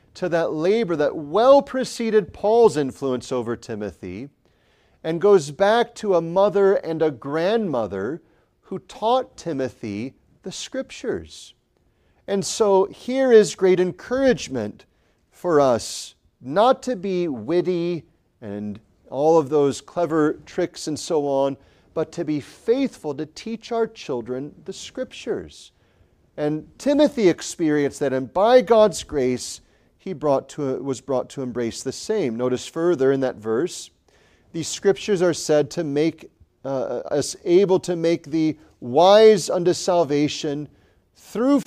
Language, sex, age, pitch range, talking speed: English, male, 40-59, 130-195 Hz, 135 wpm